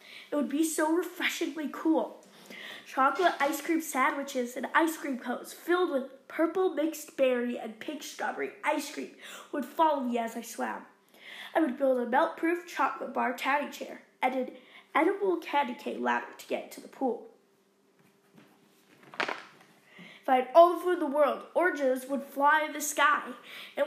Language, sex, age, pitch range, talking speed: English, female, 20-39, 255-320 Hz, 165 wpm